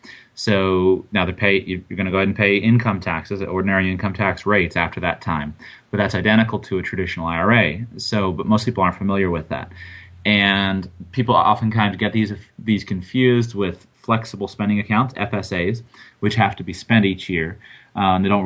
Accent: American